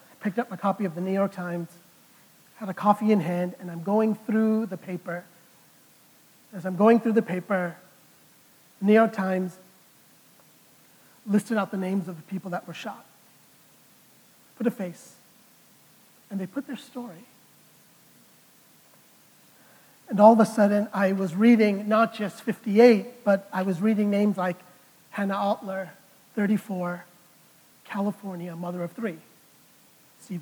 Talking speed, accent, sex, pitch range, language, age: 145 wpm, American, male, 180-220 Hz, English, 40-59